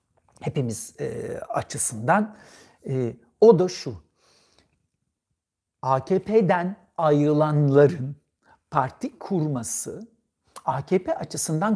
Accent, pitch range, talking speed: native, 130-200 Hz, 65 wpm